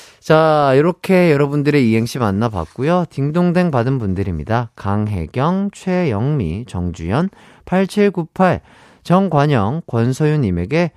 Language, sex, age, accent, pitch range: Korean, male, 40-59, native, 115-175 Hz